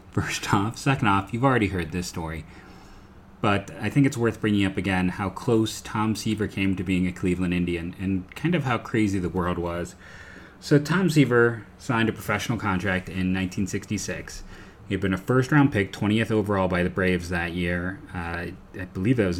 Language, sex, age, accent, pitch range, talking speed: English, male, 30-49, American, 90-110 Hz, 195 wpm